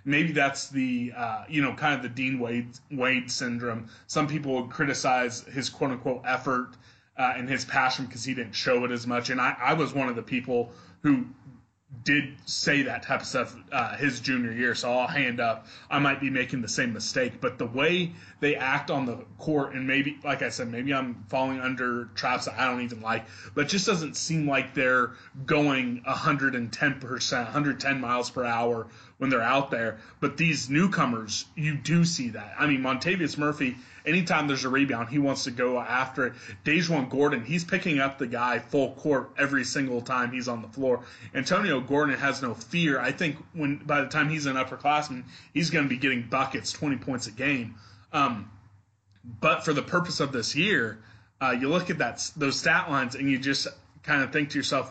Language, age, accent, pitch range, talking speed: English, 20-39, American, 120-145 Hz, 200 wpm